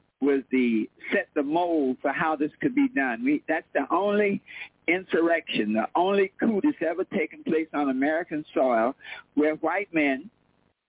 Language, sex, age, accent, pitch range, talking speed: English, male, 60-79, American, 145-185 Hz, 160 wpm